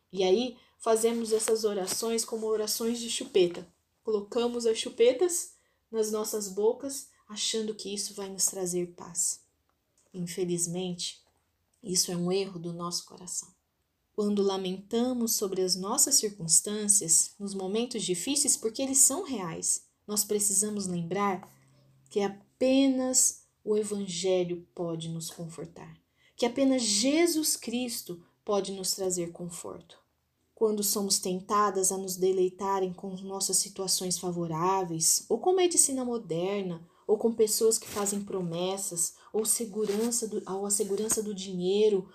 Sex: female